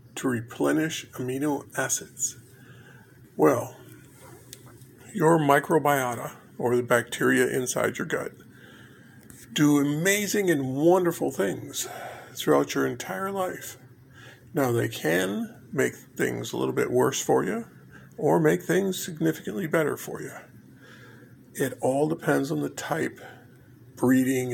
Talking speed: 110 wpm